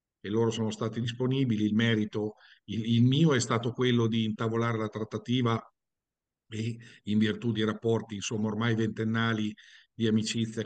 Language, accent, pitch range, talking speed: Italian, native, 110-120 Hz, 150 wpm